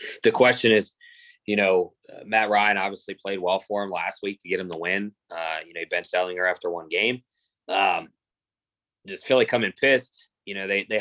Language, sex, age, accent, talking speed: English, male, 20-39, American, 205 wpm